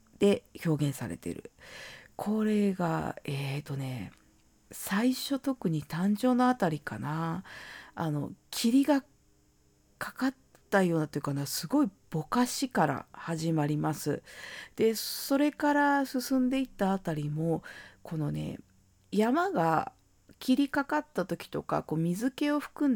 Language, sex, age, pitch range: Japanese, female, 40-59, 150-250 Hz